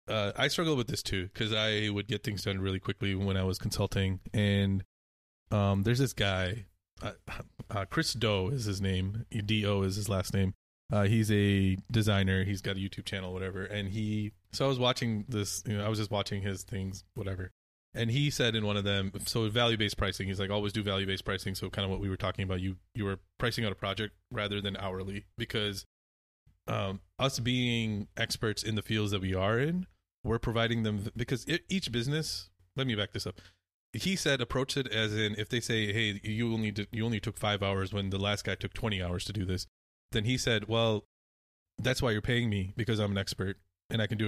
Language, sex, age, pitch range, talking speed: English, male, 20-39, 95-115 Hz, 230 wpm